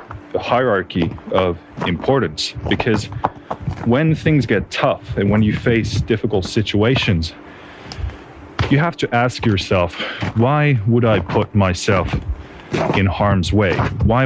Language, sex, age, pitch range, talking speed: English, male, 30-49, 95-115 Hz, 120 wpm